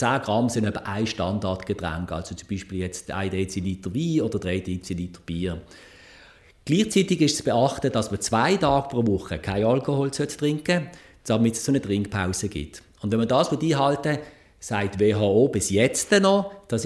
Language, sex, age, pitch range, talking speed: German, male, 50-69, 100-150 Hz, 160 wpm